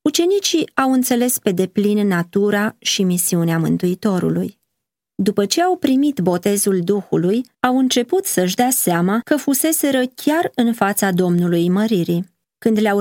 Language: Romanian